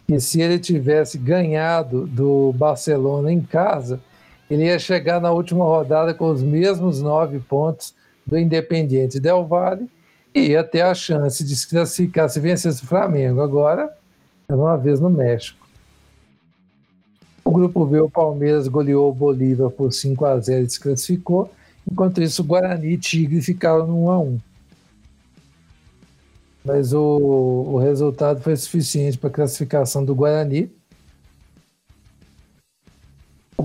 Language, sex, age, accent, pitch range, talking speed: Portuguese, male, 60-79, Brazilian, 135-165 Hz, 135 wpm